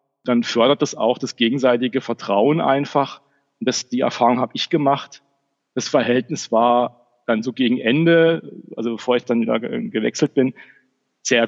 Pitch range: 115-145 Hz